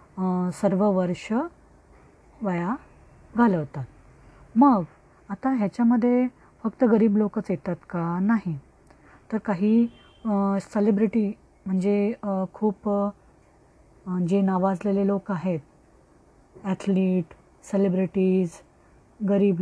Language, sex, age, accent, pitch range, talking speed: Marathi, female, 20-39, native, 190-235 Hz, 75 wpm